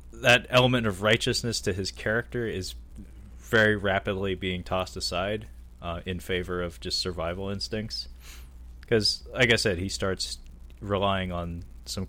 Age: 20-39